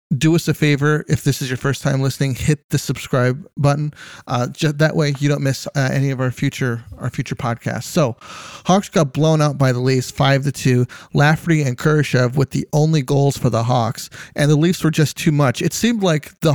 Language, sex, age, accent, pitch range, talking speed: English, male, 30-49, American, 130-155 Hz, 225 wpm